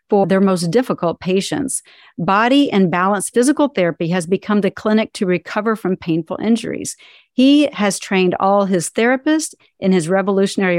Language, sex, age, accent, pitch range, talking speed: English, female, 50-69, American, 185-225 Hz, 155 wpm